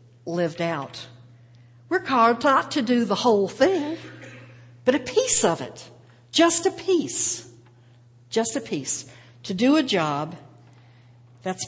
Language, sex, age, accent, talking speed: English, female, 60-79, American, 135 wpm